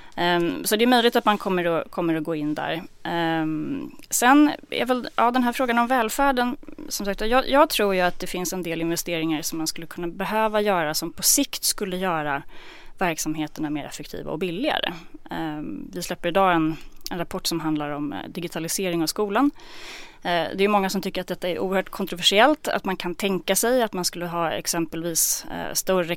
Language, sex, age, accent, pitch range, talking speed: English, female, 30-49, Swedish, 160-215 Hz, 195 wpm